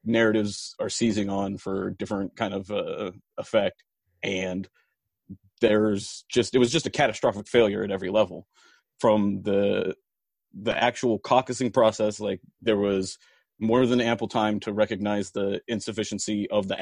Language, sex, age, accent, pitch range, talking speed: English, male, 30-49, American, 100-115 Hz, 145 wpm